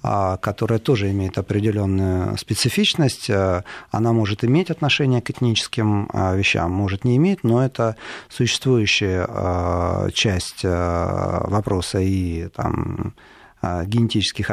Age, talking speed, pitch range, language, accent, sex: 40-59, 90 wpm, 95-120 Hz, Russian, native, male